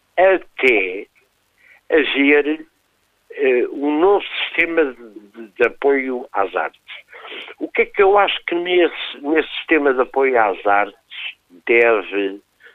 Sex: male